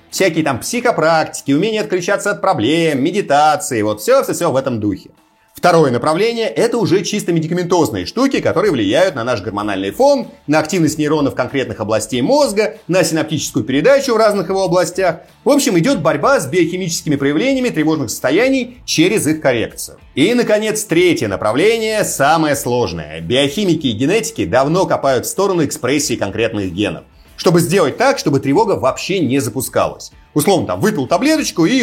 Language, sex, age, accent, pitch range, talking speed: Russian, male, 30-49, native, 135-210 Hz, 150 wpm